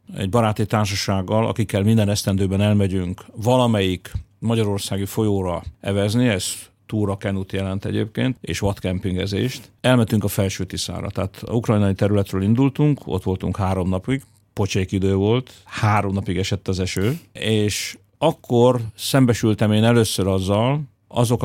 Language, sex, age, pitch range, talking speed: Hungarian, male, 50-69, 100-115 Hz, 125 wpm